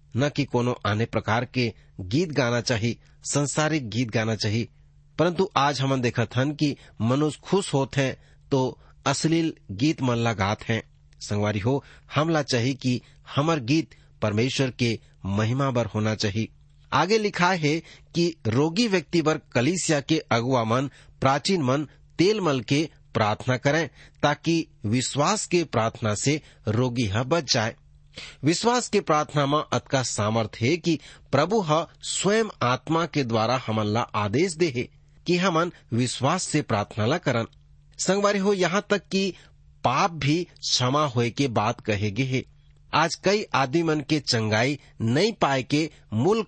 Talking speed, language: 130 wpm, English